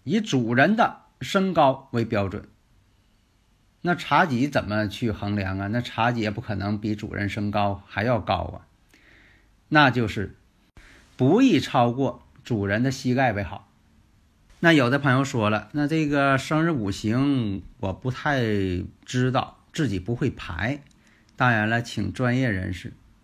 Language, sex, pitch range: Chinese, male, 105-140 Hz